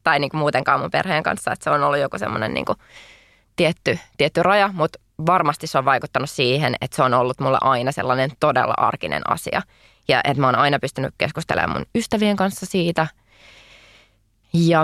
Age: 20-39